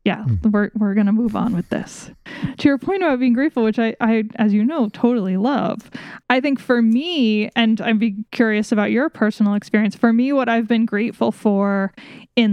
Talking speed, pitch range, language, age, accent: 200 wpm, 195-230 Hz, English, 10-29, American